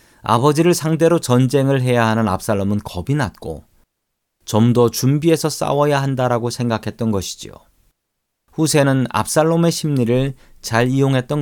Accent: native